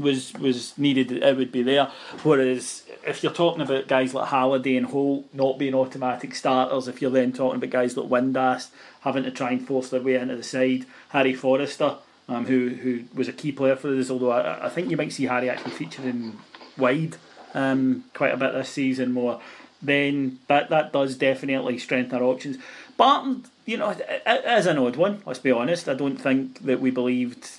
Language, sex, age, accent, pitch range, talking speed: English, male, 30-49, British, 125-140 Hz, 205 wpm